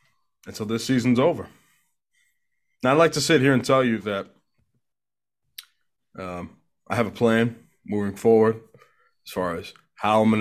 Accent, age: American, 20-39